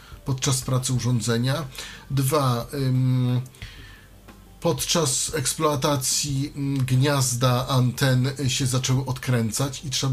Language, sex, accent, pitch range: Polish, male, native, 125-170 Hz